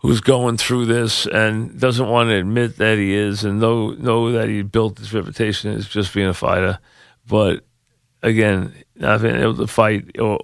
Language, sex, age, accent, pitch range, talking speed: English, male, 40-59, American, 95-115 Hz, 190 wpm